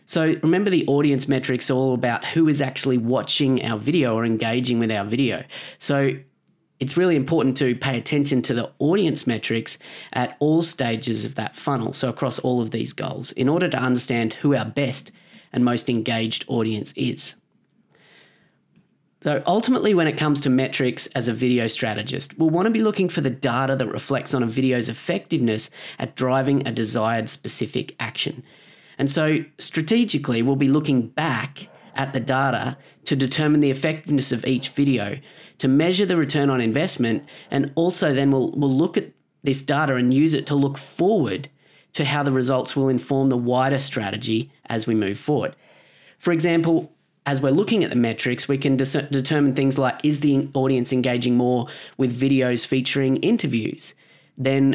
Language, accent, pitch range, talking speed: English, Australian, 125-145 Hz, 175 wpm